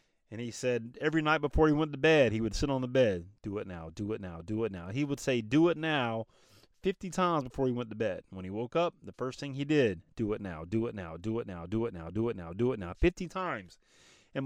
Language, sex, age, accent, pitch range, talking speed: English, male, 30-49, American, 110-165 Hz, 280 wpm